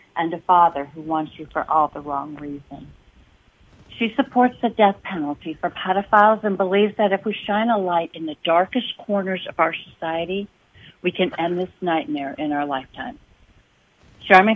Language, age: English, 60-79